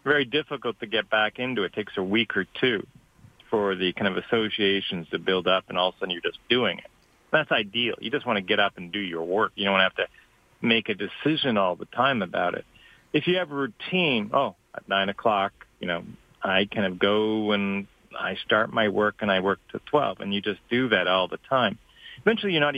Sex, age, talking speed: male, 40-59, 235 wpm